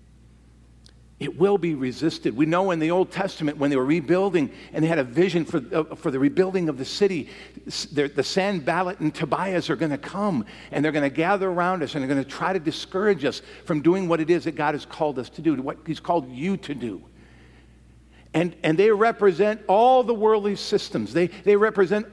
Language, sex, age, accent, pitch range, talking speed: English, male, 50-69, American, 135-200 Hz, 215 wpm